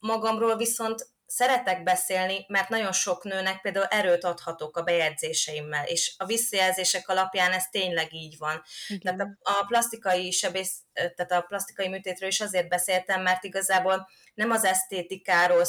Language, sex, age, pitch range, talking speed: Hungarian, female, 20-39, 175-195 Hz, 125 wpm